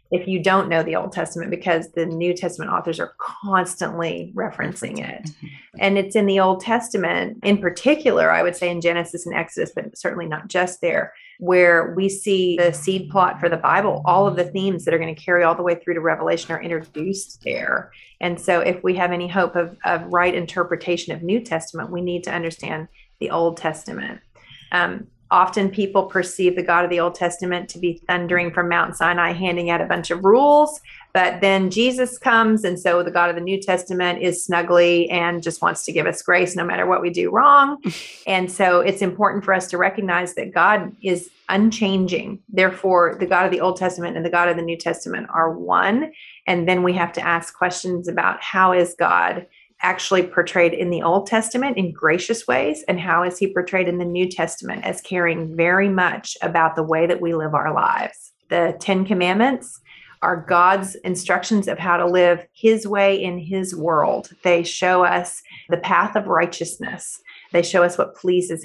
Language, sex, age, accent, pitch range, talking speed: English, female, 30-49, American, 170-190 Hz, 200 wpm